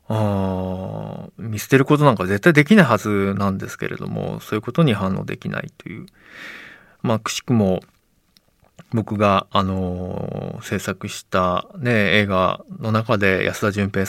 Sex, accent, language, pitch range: male, native, Japanese, 100-130 Hz